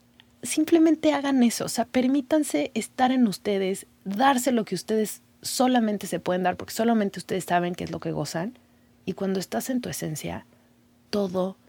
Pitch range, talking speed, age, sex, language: 155-190 Hz, 170 wpm, 30-49, female, Spanish